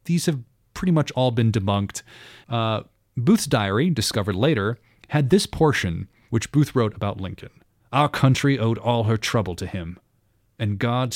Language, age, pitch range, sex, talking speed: English, 30-49, 105-140 Hz, male, 160 wpm